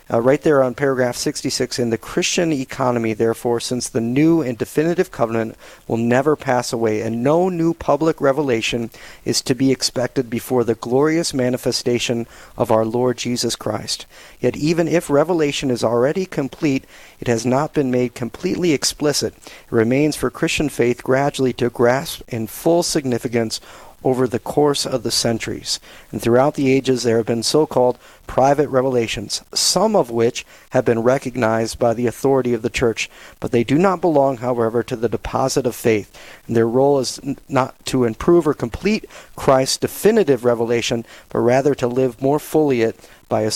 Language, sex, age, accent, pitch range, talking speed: English, male, 40-59, American, 120-145 Hz, 170 wpm